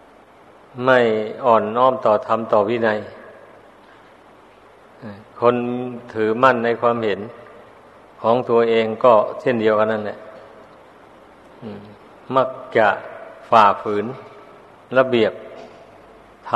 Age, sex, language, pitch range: 60-79, male, Thai, 115-120 Hz